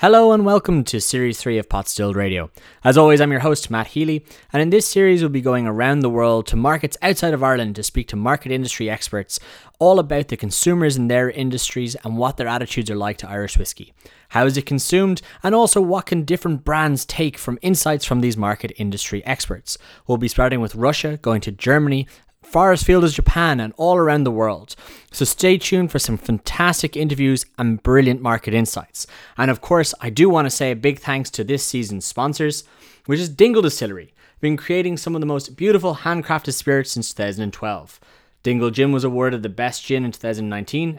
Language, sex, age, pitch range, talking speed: English, male, 20-39, 115-155 Hz, 205 wpm